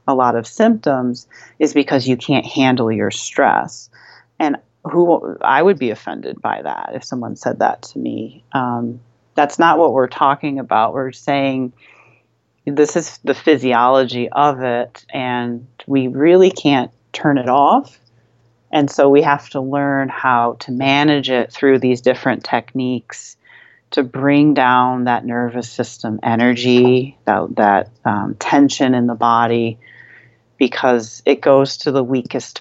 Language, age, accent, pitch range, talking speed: English, 40-59, American, 120-140 Hz, 150 wpm